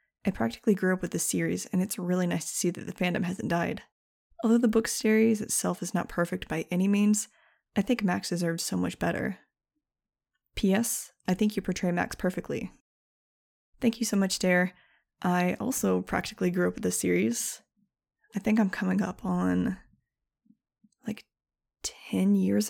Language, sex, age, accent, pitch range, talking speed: English, female, 20-39, American, 180-220 Hz, 170 wpm